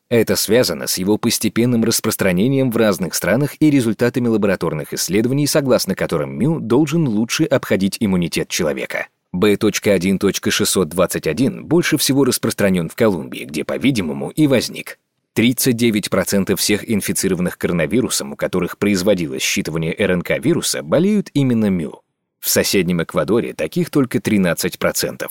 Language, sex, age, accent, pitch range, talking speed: Russian, male, 30-49, native, 95-140 Hz, 115 wpm